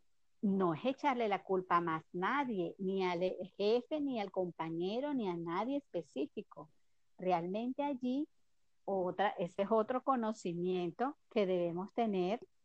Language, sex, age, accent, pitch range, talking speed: Spanish, female, 40-59, American, 190-240 Hz, 135 wpm